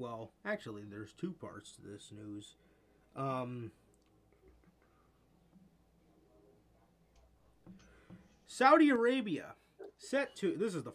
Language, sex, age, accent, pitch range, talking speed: English, male, 30-49, American, 115-180 Hz, 90 wpm